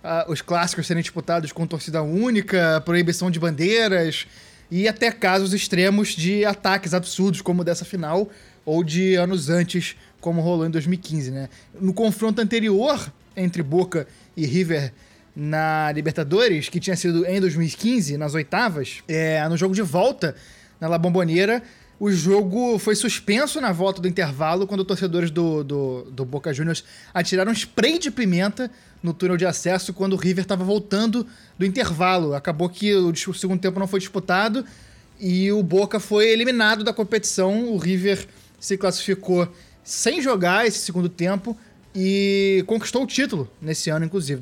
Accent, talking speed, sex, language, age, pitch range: Brazilian, 155 wpm, male, Portuguese, 20-39, 160-200 Hz